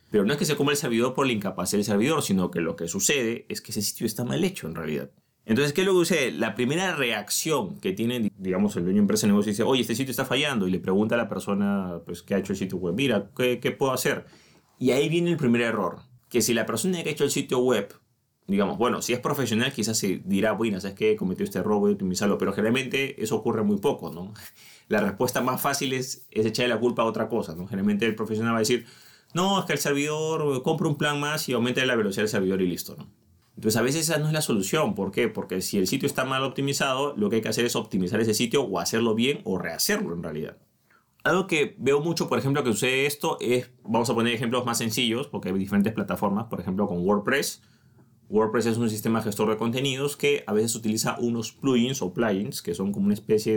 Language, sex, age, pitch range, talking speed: Spanish, male, 30-49, 110-145 Hz, 250 wpm